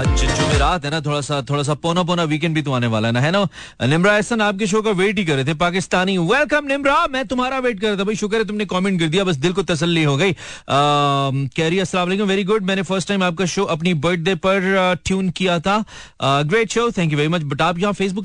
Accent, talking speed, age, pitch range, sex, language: native, 160 wpm, 30-49, 120-190 Hz, male, Hindi